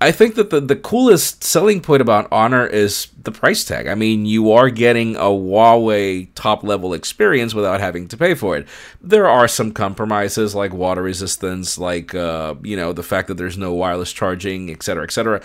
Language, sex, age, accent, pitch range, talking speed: English, male, 40-59, American, 95-140 Hz, 190 wpm